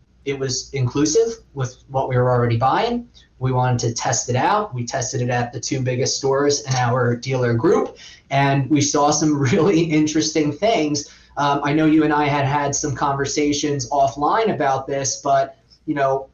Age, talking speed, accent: 20-39, 185 wpm, American